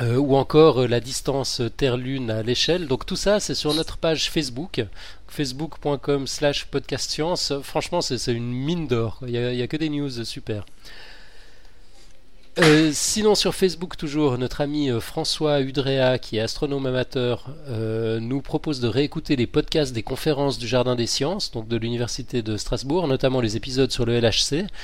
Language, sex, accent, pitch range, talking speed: French, male, French, 120-150 Hz, 170 wpm